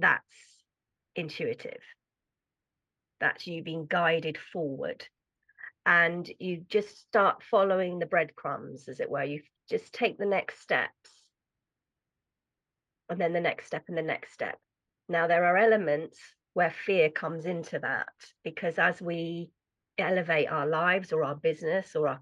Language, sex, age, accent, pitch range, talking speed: English, female, 40-59, British, 165-215 Hz, 140 wpm